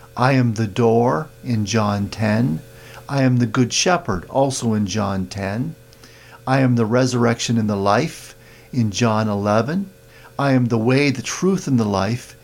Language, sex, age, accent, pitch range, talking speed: English, male, 50-69, American, 115-135 Hz, 170 wpm